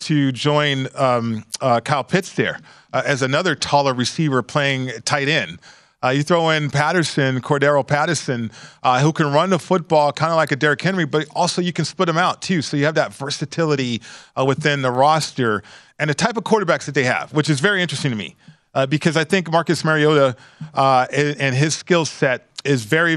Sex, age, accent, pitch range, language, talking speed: male, 40-59, American, 130-160 Hz, English, 205 wpm